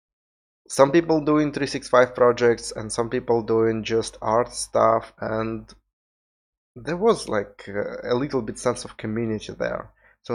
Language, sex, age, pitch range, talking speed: English, male, 20-39, 110-140 Hz, 140 wpm